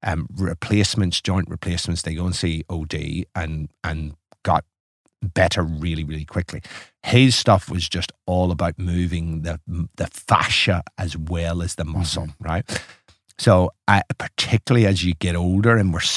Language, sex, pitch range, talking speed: English, male, 90-115 Hz, 155 wpm